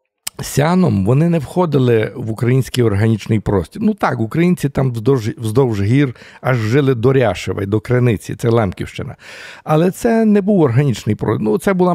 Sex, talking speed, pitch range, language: male, 160 wpm, 115-150 Hz, Ukrainian